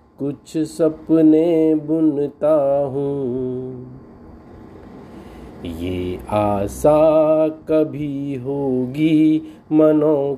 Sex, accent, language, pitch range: male, native, Hindi, 125-155 Hz